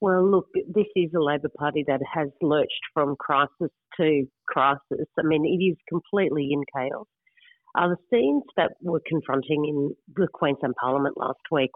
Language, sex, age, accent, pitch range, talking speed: English, female, 40-59, Australian, 145-185 Hz, 170 wpm